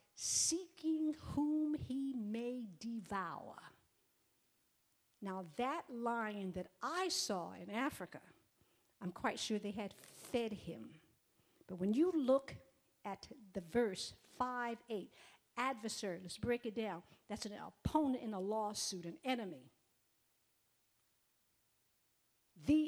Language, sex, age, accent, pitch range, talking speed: English, female, 50-69, American, 195-260 Hz, 115 wpm